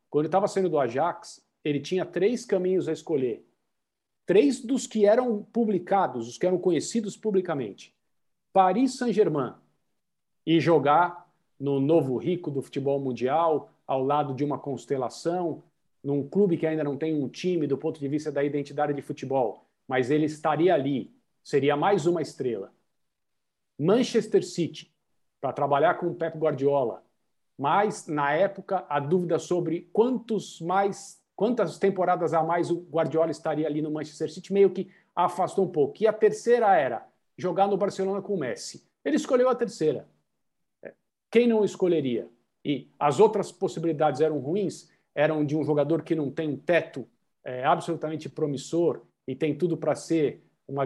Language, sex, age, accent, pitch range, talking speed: Portuguese, male, 50-69, Brazilian, 145-190 Hz, 155 wpm